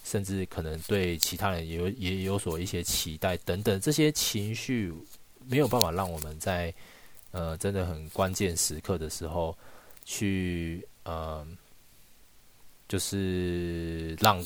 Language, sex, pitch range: Chinese, male, 85-115 Hz